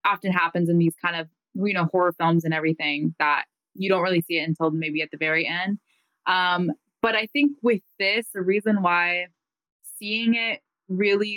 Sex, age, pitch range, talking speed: female, 20-39, 170-195 Hz, 190 wpm